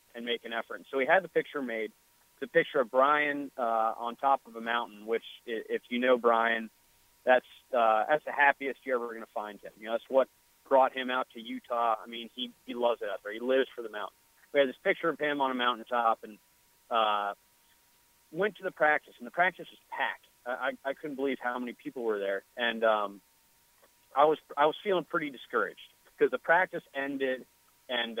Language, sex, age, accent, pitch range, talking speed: English, male, 30-49, American, 115-145 Hz, 220 wpm